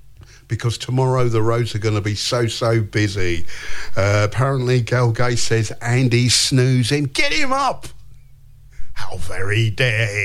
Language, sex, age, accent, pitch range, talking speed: English, male, 50-69, British, 110-165 Hz, 140 wpm